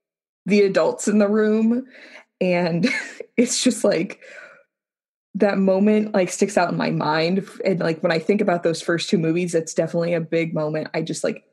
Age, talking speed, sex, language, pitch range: 20-39, 180 wpm, female, English, 165-205 Hz